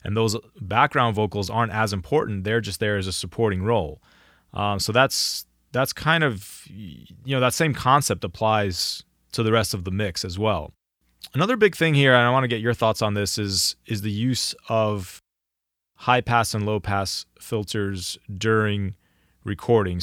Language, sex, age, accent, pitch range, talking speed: English, male, 20-39, American, 100-115 Hz, 180 wpm